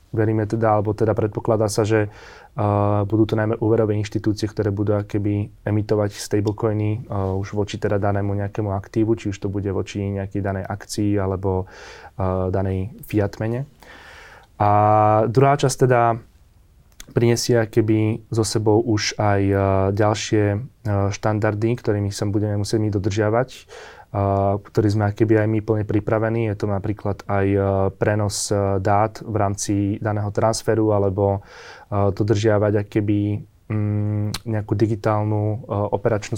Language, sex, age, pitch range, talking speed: Slovak, male, 20-39, 100-115 Hz, 120 wpm